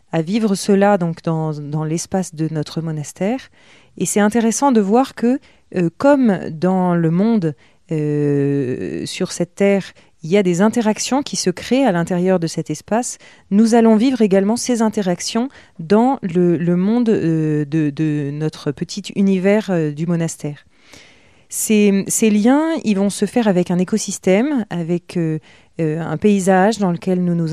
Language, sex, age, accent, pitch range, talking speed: French, female, 30-49, French, 160-205 Hz, 165 wpm